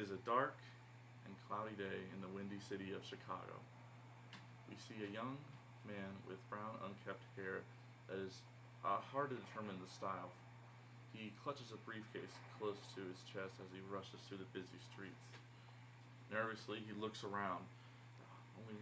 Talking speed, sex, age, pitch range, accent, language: 160 wpm, male, 20-39, 105-120 Hz, American, English